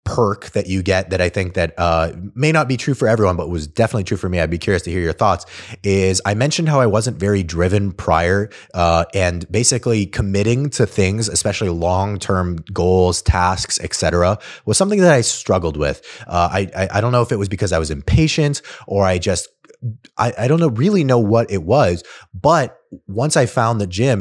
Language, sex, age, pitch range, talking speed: English, male, 20-39, 90-110 Hz, 215 wpm